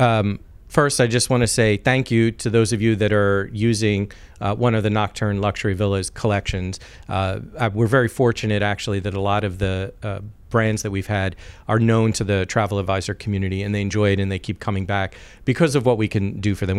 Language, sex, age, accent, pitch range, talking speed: English, male, 40-59, American, 100-120 Hz, 225 wpm